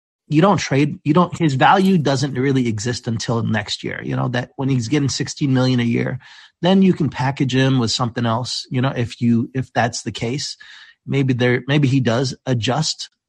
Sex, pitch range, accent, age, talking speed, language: male, 120-145 Hz, American, 30-49, 205 wpm, English